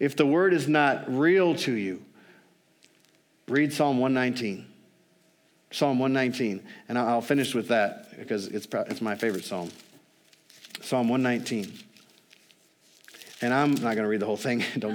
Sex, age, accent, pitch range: male, 40-59, American, 125-165 Hz